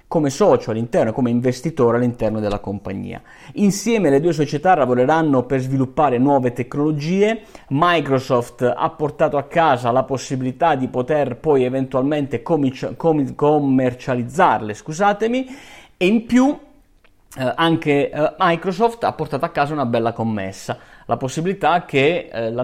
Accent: native